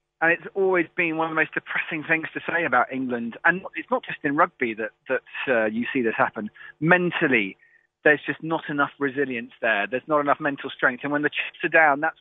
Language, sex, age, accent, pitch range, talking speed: English, male, 30-49, British, 140-175 Hz, 225 wpm